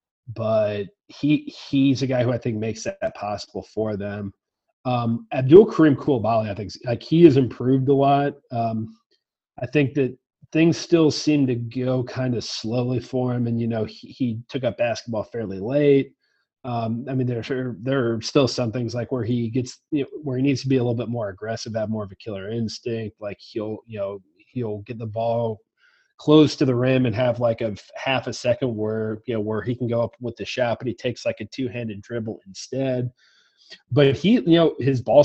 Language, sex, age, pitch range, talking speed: English, male, 30-49, 115-135 Hz, 220 wpm